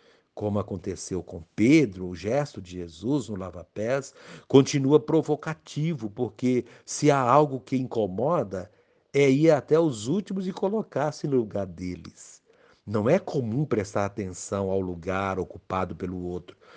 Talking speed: 135 wpm